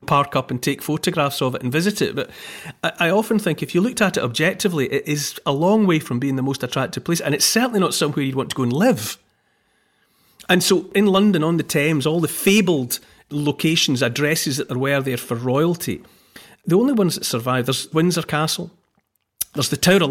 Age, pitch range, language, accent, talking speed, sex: 40-59, 130-170 Hz, English, British, 210 wpm, male